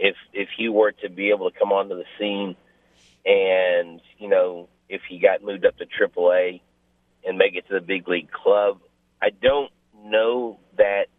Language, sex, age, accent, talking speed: English, male, 40-59, American, 180 wpm